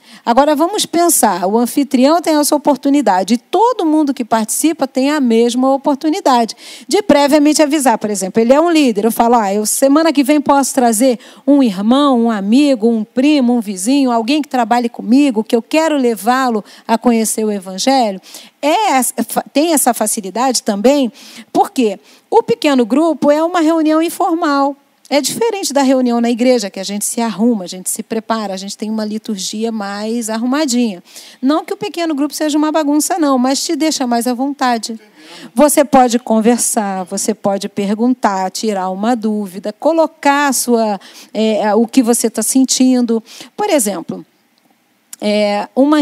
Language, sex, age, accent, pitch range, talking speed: Portuguese, female, 40-59, Brazilian, 220-295 Hz, 160 wpm